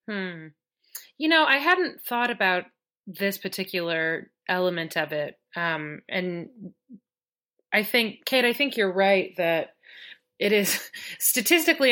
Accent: American